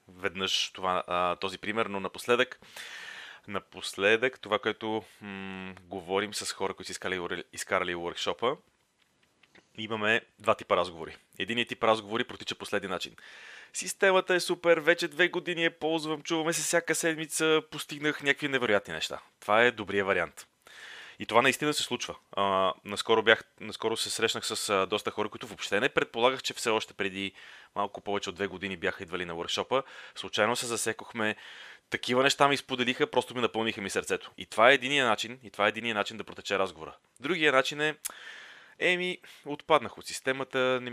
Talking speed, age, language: 160 wpm, 30-49, Bulgarian